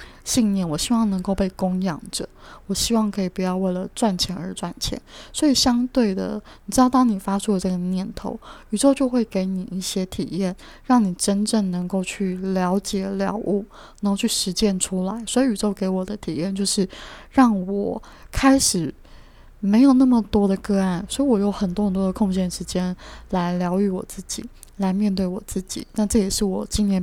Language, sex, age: Chinese, female, 20-39